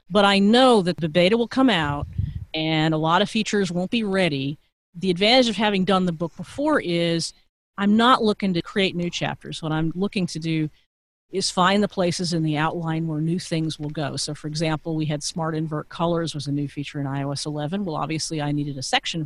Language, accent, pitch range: English, American, 150-185 Hz